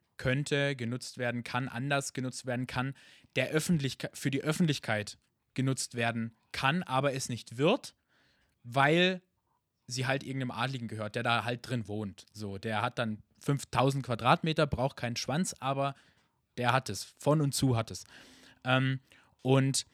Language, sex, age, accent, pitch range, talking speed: German, male, 20-39, German, 110-145 Hz, 155 wpm